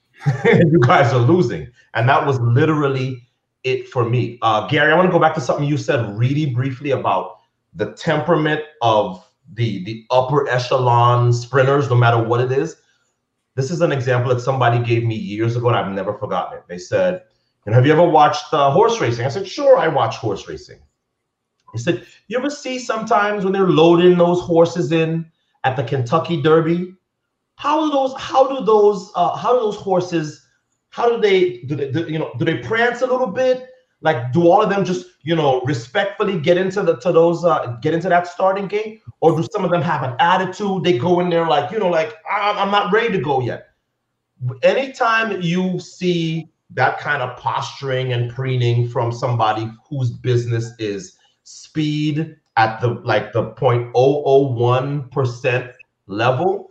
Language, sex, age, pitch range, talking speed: English, male, 30-49, 125-180 Hz, 185 wpm